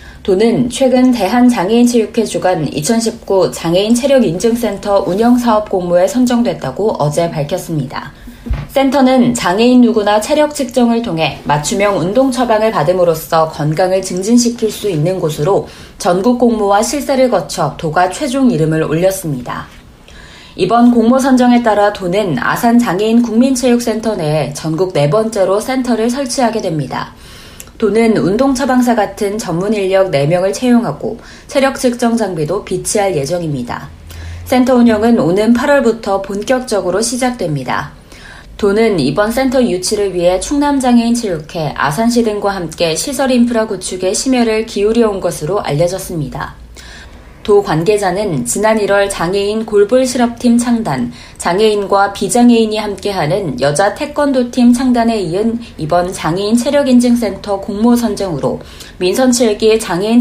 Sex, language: female, Korean